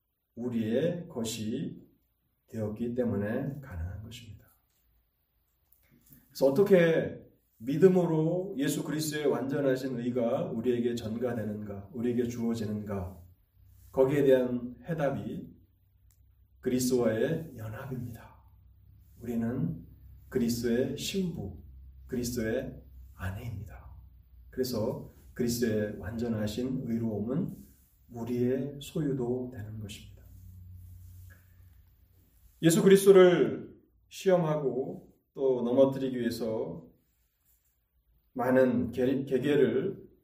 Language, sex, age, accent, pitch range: Korean, male, 30-49, native, 100-140 Hz